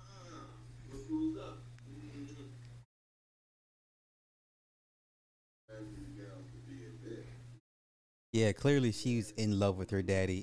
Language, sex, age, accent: English, male, 30-49, American